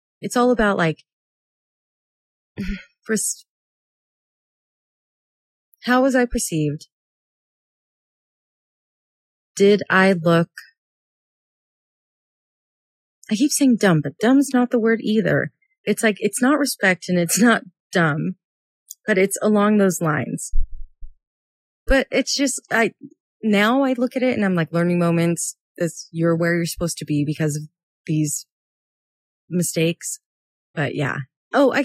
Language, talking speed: English, 120 wpm